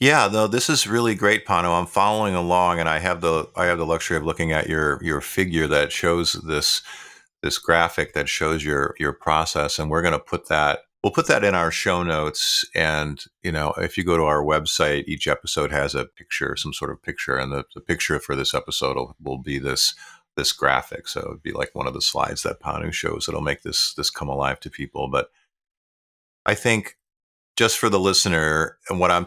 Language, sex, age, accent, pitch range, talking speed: English, male, 50-69, American, 70-85 Hz, 220 wpm